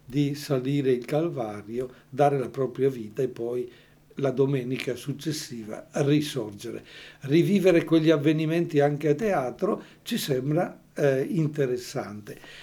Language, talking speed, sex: Italian, 110 wpm, male